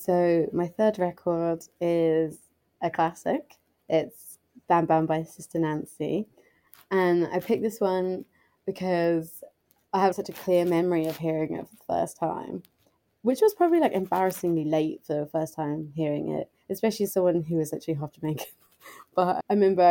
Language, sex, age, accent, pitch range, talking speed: English, female, 20-39, British, 160-190 Hz, 170 wpm